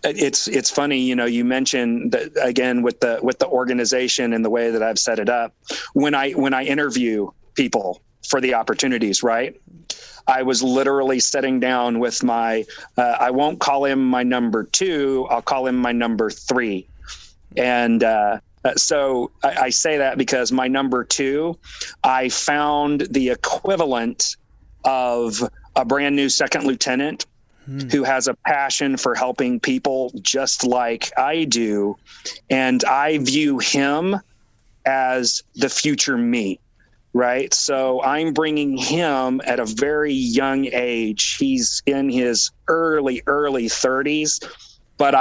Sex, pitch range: male, 120-140 Hz